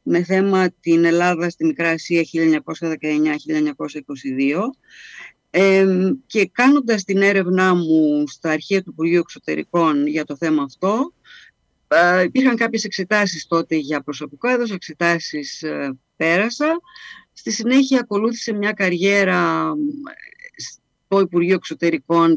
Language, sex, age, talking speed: Greek, female, 50-69, 115 wpm